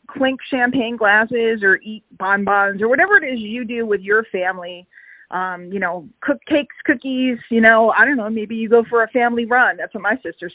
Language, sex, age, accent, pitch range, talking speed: English, female, 40-59, American, 215-290 Hz, 210 wpm